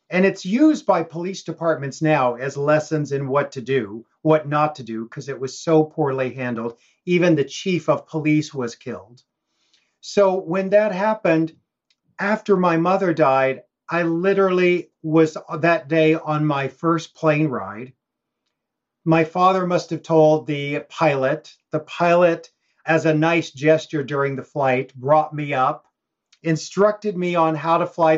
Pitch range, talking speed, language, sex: 145-180 Hz, 155 wpm, English, male